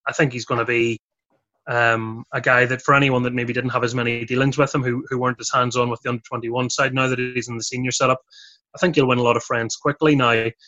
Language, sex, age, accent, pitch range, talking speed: English, male, 20-39, British, 120-135 Hz, 280 wpm